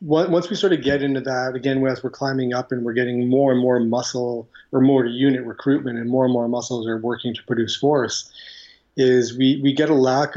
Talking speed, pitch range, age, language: 225 wpm, 115-135 Hz, 30-49, English